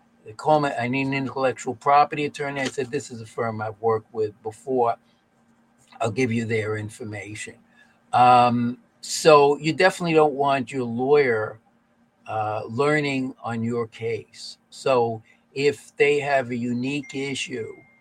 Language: English